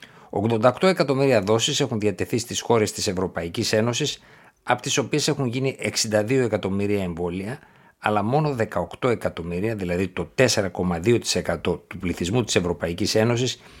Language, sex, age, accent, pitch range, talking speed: Greek, male, 60-79, native, 90-120 Hz, 130 wpm